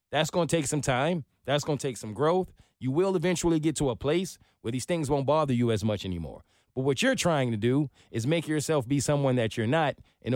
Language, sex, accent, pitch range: English, male, American, 130-170 Hz